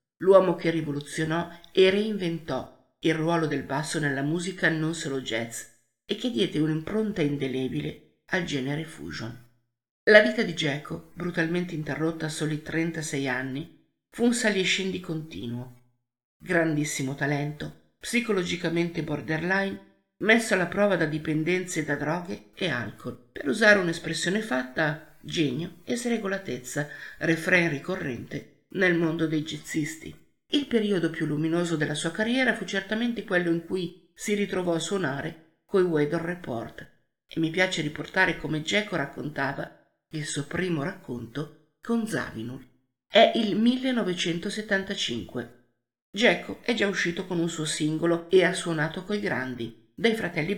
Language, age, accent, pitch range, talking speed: Italian, 50-69, native, 145-185 Hz, 135 wpm